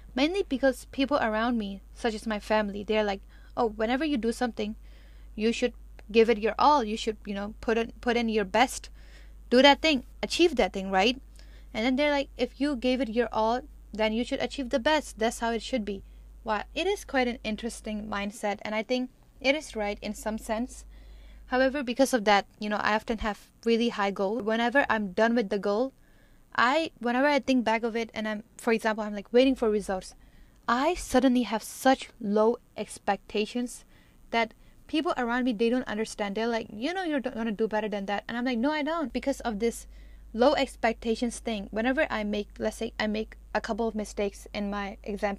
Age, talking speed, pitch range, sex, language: 10-29, 210 wpm, 215-255 Hz, female, English